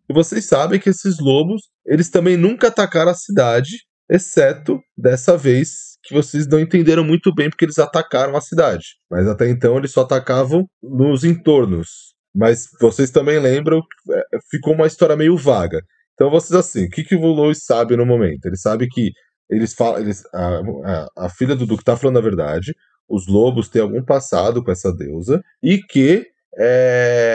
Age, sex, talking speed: 20-39, male, 180 wpm